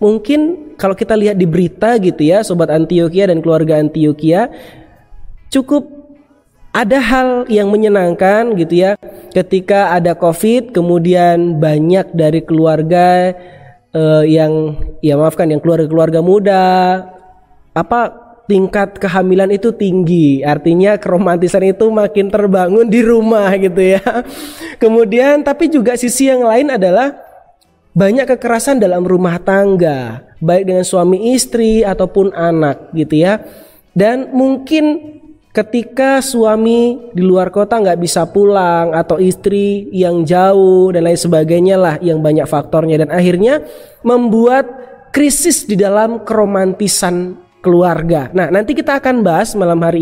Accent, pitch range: native, 175-230 Hz